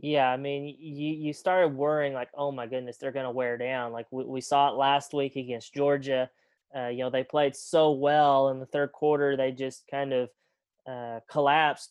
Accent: American